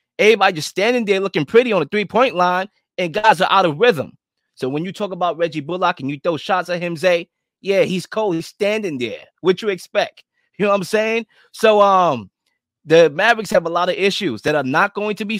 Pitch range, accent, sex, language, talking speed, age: 175-235 Hz, American, male, English, 235 wpm, 20-39